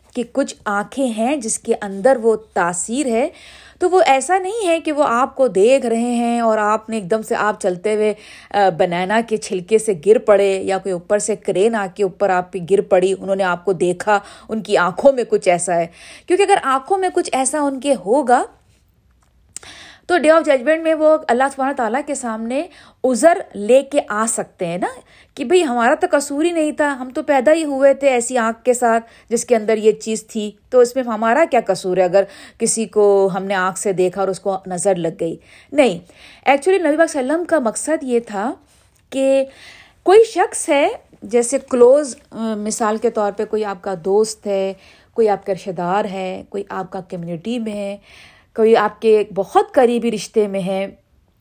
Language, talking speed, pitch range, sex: Urdu, 205 wpm, 200-290 Hz, female